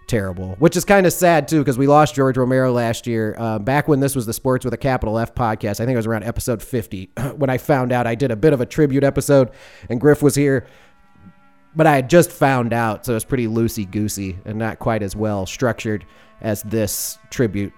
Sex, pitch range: male, 110-140 Hz